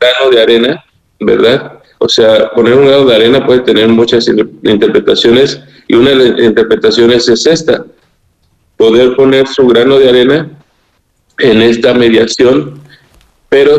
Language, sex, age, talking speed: Spanish, male, 40-59, 145 wpm